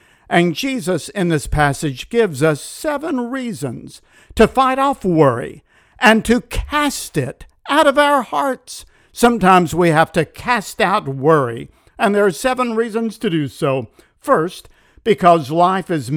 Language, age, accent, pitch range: English, 50-69, American, 150-225 Hz